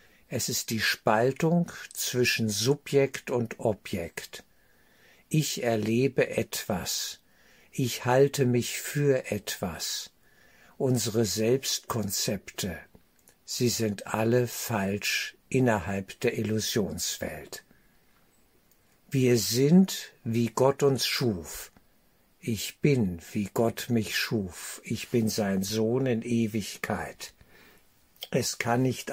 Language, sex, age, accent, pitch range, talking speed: German, male, 60-79, German, 105-130 Hz, 95 wpm